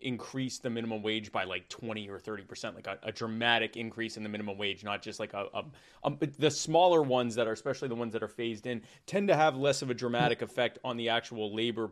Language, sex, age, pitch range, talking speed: English, male, 20-39, 115-140 Hz, 250 wpm